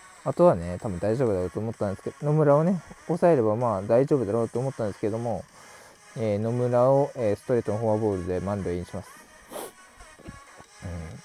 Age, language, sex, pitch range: 20-39, Japanese, male, 95-140 Hz